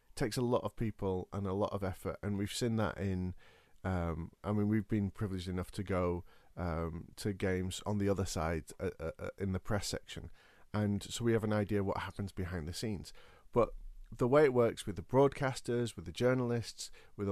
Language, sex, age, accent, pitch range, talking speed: English, male, 40-59, British, 100-130 Hz, 210 wpm